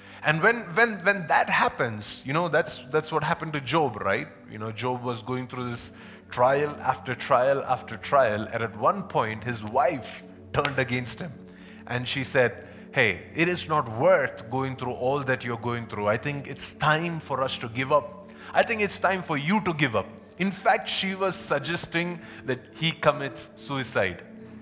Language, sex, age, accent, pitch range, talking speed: English, male, 30-49, Indian, 125-185 Hz, 190 wpm